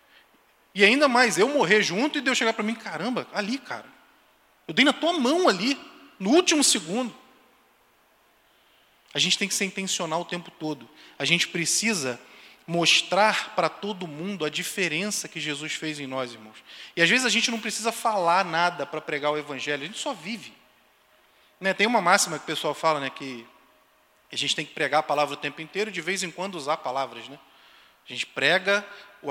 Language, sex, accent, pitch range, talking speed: Portuguese, male, Brazilian, 155-225 Hz, 195 wpm